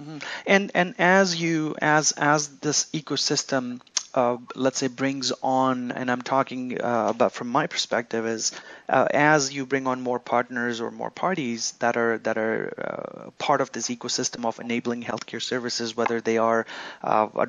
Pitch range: 120-145 Hz